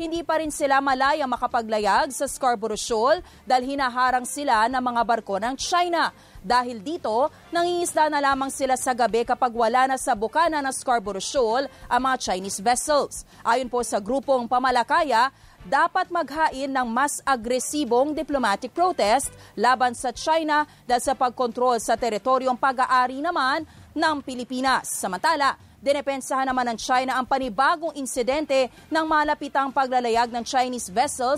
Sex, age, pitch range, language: female, 30-49, 245-285 Hz, English